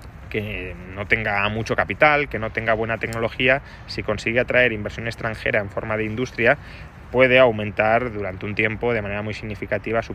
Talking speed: 170 wpm